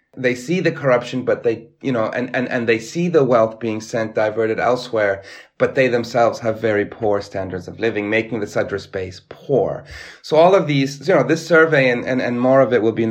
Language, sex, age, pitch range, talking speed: English, male, 30-49, 115-145 Hz, 230 wpm